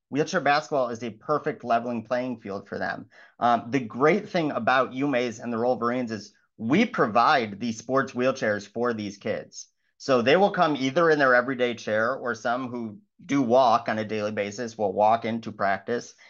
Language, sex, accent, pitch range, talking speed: English, male, American, 115-150 Hz, 185 wpm